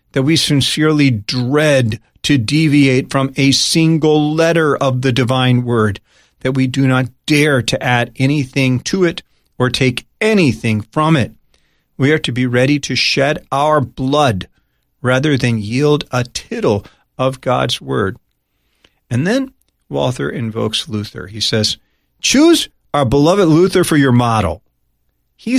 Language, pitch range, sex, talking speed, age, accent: English, 110-145 Hz, male, 145 wpm, 40-59, American